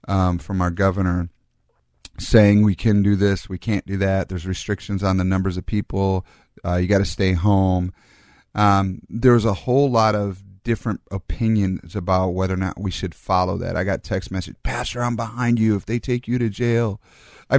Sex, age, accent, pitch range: male, 30-49, American, 95-110 Hz